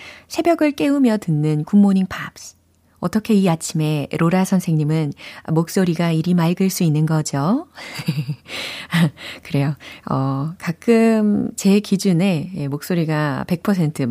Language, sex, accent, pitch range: Korean, female, native, 150-205 Hz